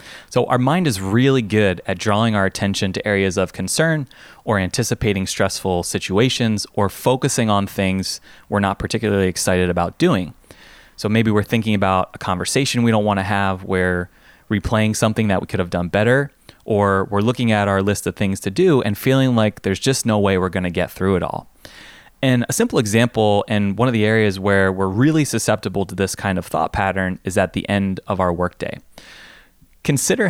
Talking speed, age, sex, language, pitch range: 200 wpm, 20-39, male, English, 95-115 Hz